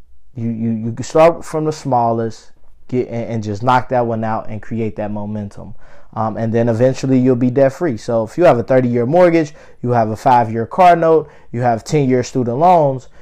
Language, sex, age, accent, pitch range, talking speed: English, male, 20-39, American, 115-145 Hz, 200 wpm